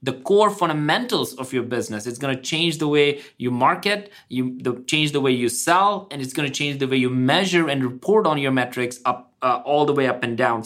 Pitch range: 130-160 Hz